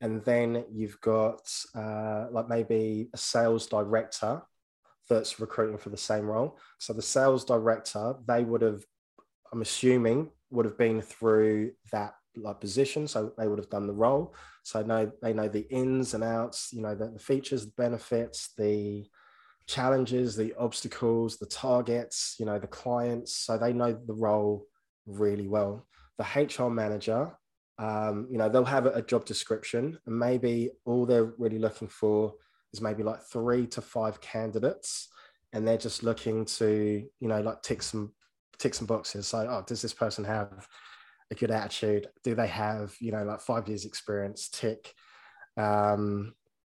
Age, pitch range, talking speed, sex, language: 20-39, 105-120 Hz, 165 wpm, male, English